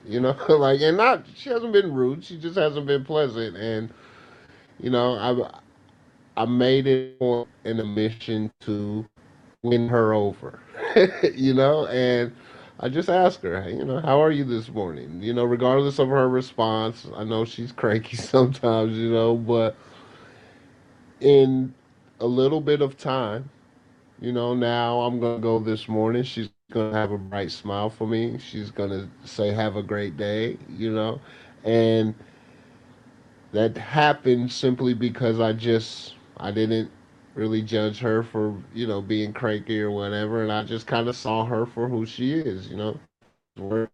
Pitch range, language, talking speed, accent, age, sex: 110-130 Hz, English, 165 wpm, American, 30-49, male